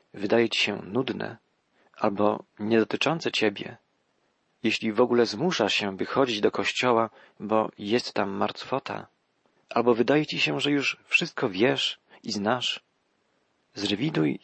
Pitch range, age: 110-135 Hz, 40-59